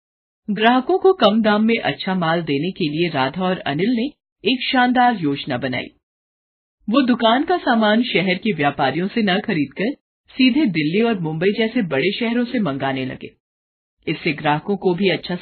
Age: 50-69